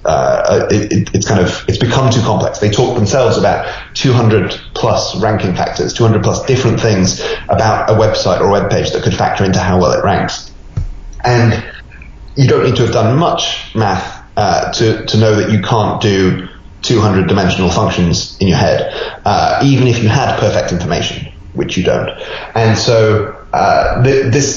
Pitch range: 95-120 Hz